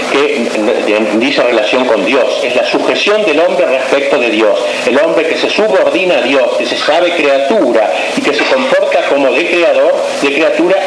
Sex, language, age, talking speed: male, Spanish, 60-79, 180 wpm